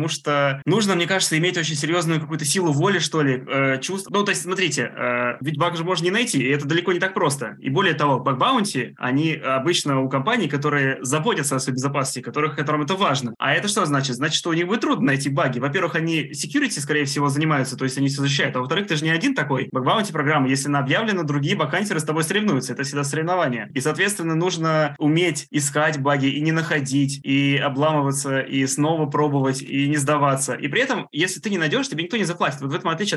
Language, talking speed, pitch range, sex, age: Russian, 225 wpm, 140-175 Hz, male, 20-39